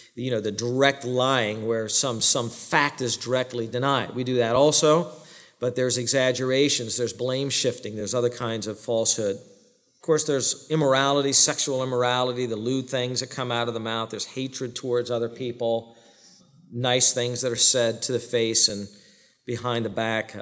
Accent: American